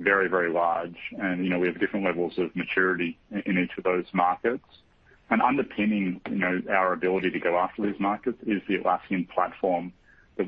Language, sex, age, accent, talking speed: English, male, 30-49, Australian, 190 wpm